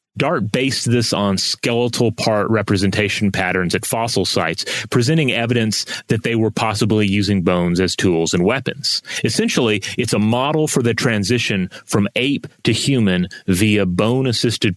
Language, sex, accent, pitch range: English, male, American, 100-120 Hz